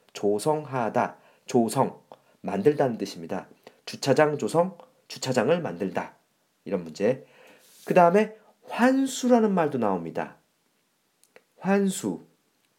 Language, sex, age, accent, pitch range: Korean, male, 40-59, native, 110-175 Hz